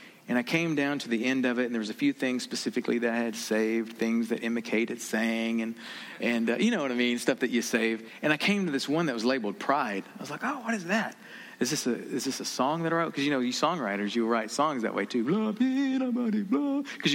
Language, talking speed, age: English, 270 wpm, 40-59